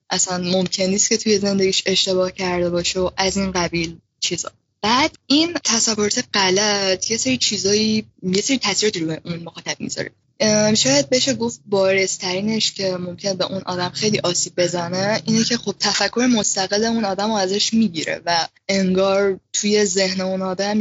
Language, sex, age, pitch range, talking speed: English, female, 10-29, 180-210 Hz, 160 wpm